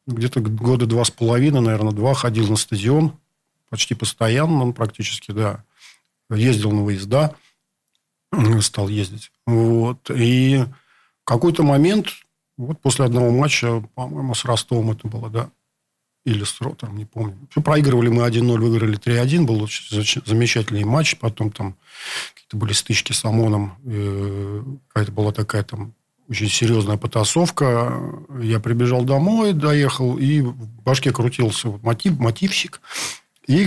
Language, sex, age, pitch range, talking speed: Russian, male, 50-69, 110-130 Hz, 130 wpm